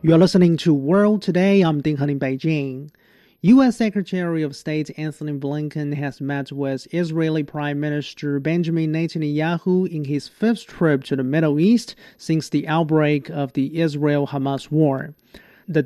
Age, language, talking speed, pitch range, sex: 30-49, English, 150 wpm, 145-175 Hz, male